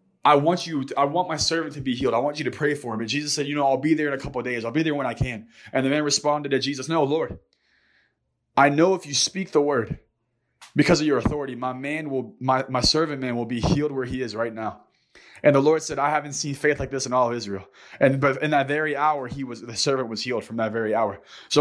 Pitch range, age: 135-175 Hz, 20-39